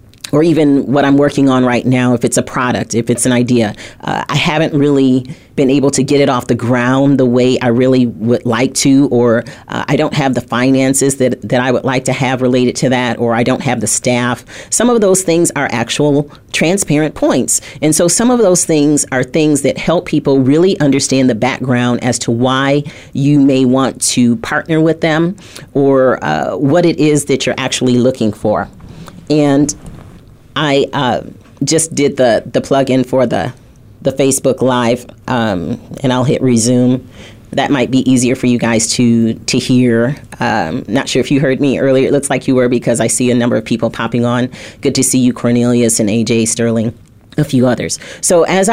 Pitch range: 120-145 Hz